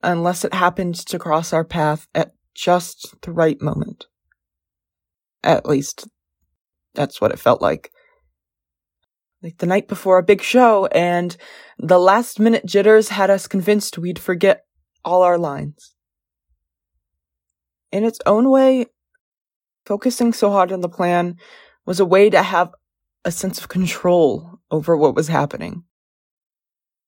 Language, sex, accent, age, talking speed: English, female, American, 20-39, 135 wpm